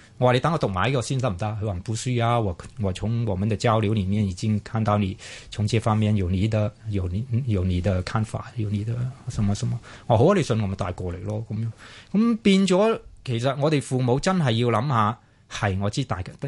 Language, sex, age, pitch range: Chinese, male, 20-39, 100-125 Hz